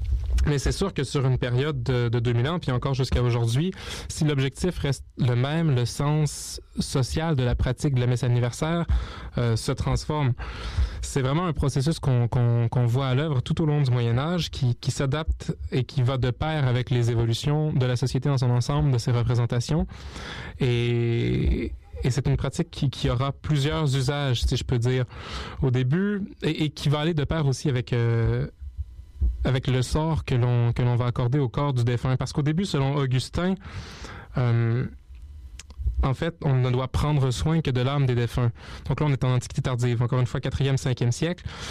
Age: 20-39